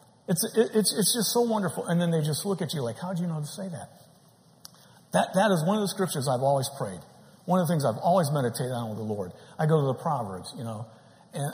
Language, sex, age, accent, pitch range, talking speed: English, male, 50-69, American, 130-175 Hz, 265 wpm